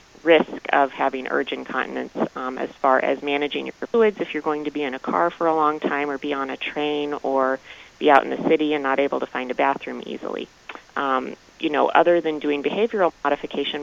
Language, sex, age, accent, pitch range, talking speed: English, female, 30-49, American, 135-150 Hz, 220 wpm